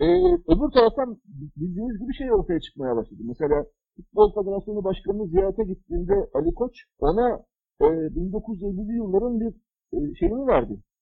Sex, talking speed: male, 135 wpm